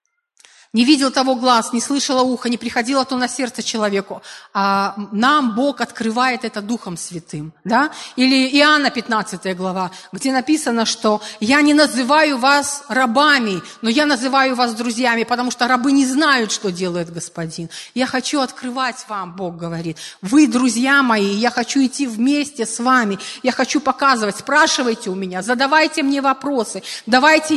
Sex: female